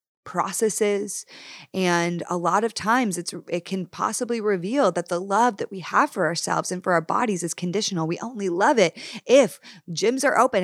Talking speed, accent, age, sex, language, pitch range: 185 wpm, American, 20-39, female, English, 170-210 Hz